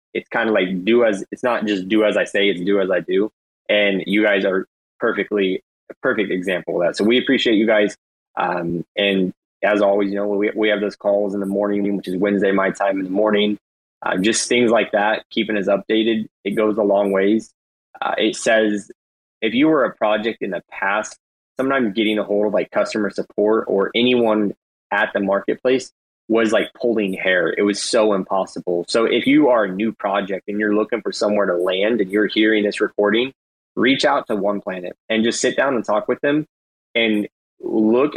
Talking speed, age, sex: 210 wpm, 20-39, male